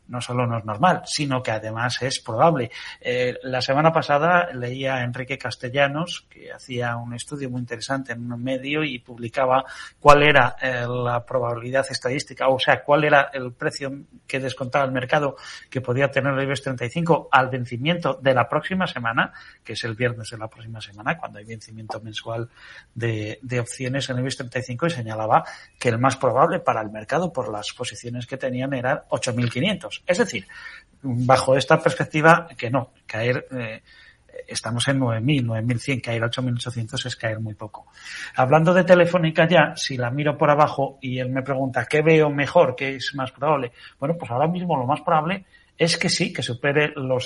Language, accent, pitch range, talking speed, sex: Spanish, Spanish, 120-155 Hz, 185 wpm, male